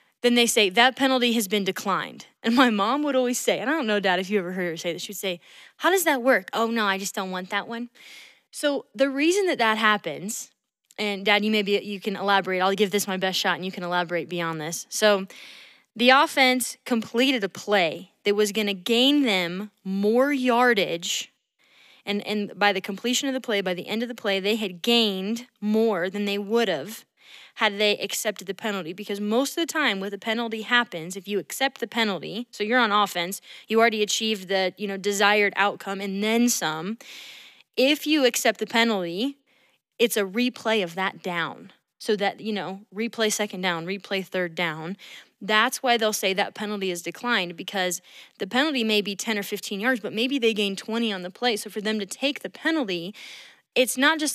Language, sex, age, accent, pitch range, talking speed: English, female, 20-39, American, 195-245 Hz, 210 wpm